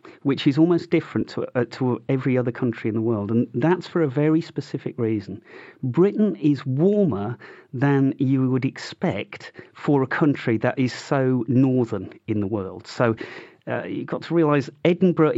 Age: 40-59